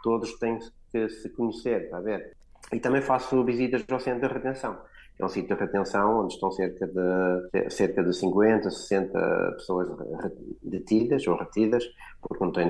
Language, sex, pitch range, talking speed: Portuguese, male, 95-110 Hz, 175 wpm